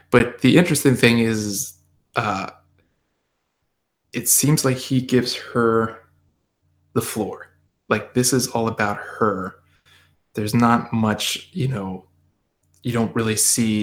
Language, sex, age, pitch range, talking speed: English, male, 20-39, 105-125 Hz, 125 wpm